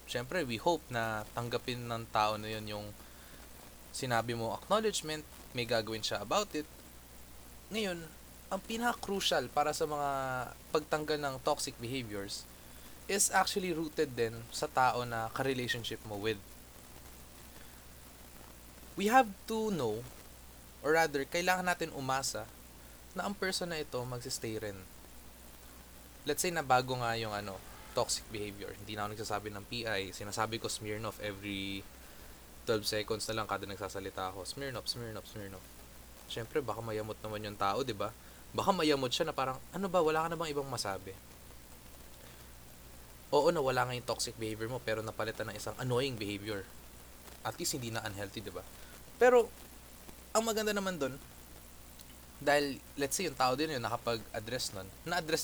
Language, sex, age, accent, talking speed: Filipino, male, 20-39, native, 155 wpm